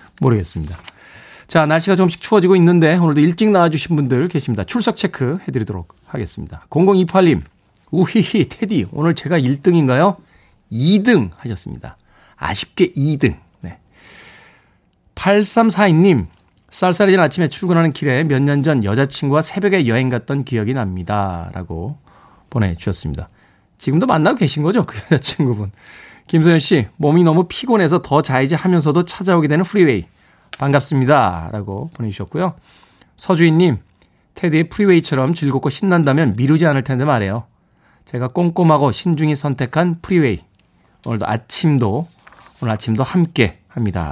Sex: male